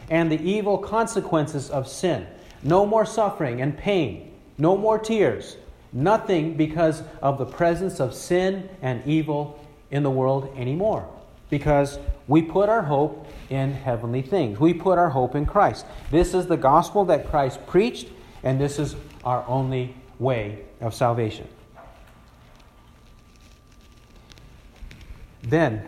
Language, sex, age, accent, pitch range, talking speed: English, male, 50-69, American, 135-190 Hz, 130 wpm